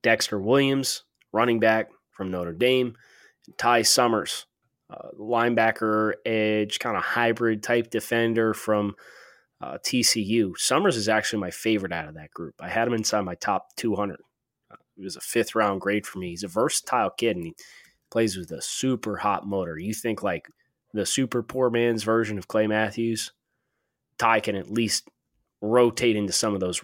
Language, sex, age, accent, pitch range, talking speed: English, male, 20-39, American, 100-120 Hz, 170 wpm